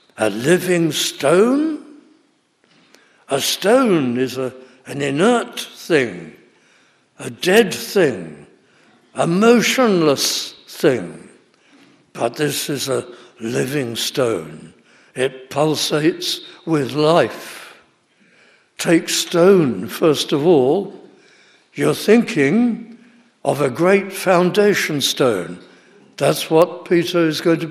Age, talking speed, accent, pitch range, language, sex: 60-79, 95 wpm, British, 145-195 Hz, English, male